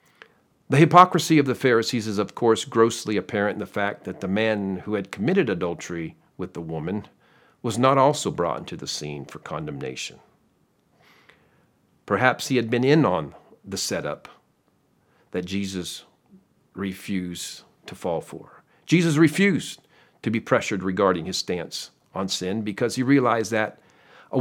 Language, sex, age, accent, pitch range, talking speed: English, male, 50-69, American, 95-130 Hz, 150 wpm